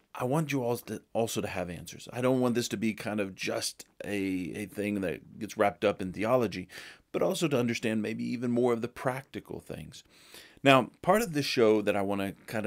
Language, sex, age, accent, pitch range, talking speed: English, male, 30-49, American, 100-125 Hz, 225 wpm